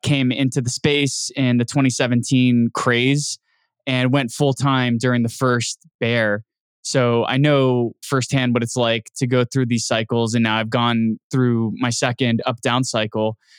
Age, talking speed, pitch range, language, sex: 20-39, 160 wpm, 120-140 Hz, English, male